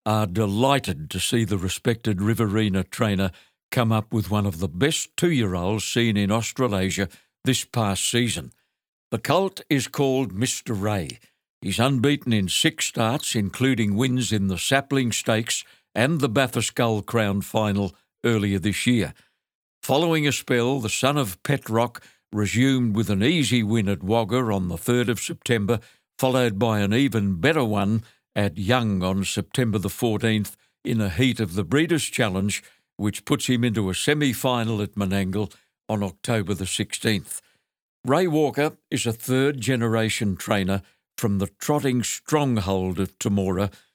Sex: male